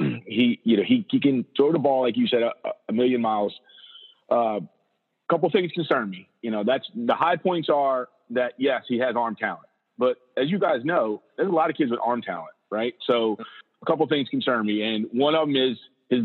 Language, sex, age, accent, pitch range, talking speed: English, male, 40-59, American, 120-165 Hz, 230 wpm